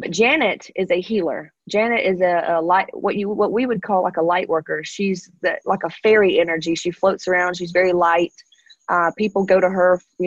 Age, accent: 30-49, American